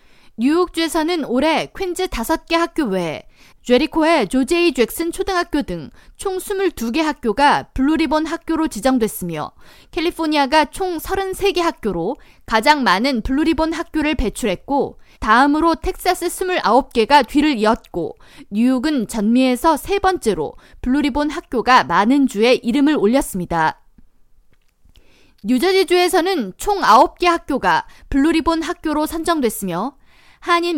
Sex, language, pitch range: female, Korean, 250-335 Hz